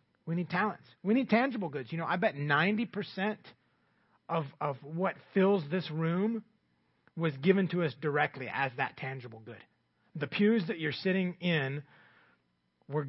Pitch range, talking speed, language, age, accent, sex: 135-175 Hz, 155 wpm, English, 30-49, American, male